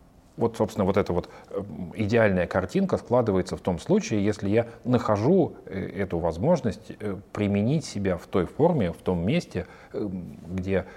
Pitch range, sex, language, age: 90-115 Hz, male, Russian, 40-59